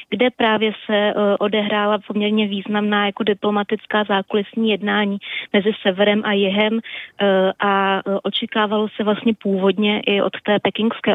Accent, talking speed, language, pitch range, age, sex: native, 125 wpm, Czech, 195-215 Hz, 20-39, female